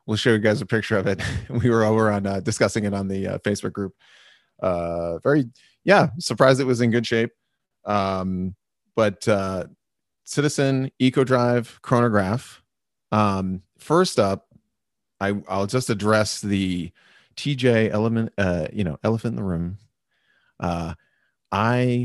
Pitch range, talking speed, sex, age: 95-130 Hz, 150 wpm, male, 30-49